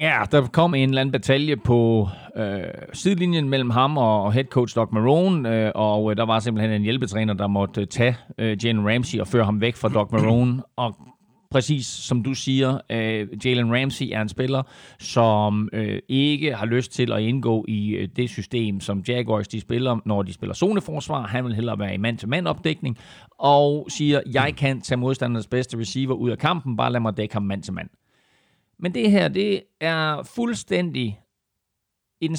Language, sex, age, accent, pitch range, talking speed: Danish, male, 40-59, native, 110-145 Hz, 180 wpm